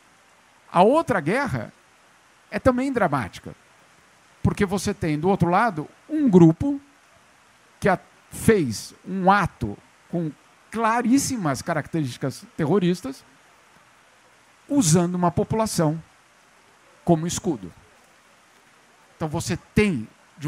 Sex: male